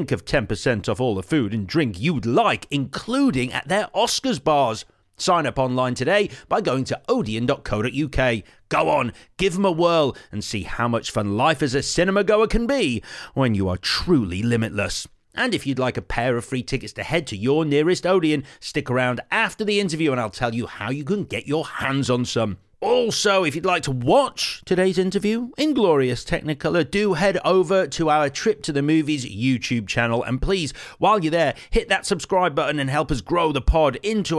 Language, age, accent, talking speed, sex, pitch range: English, 40-59, British, 200 wpm, male, 120-185 Hz